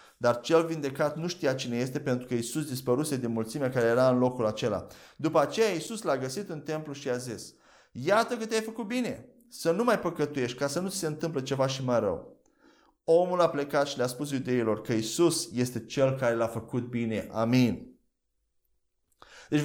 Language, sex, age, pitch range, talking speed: Romanian, male, 30-49, 135-205 Hz, 190 wpm